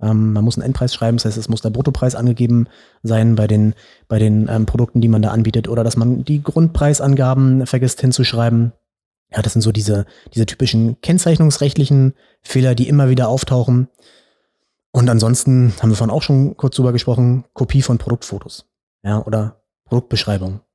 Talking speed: 170 wpm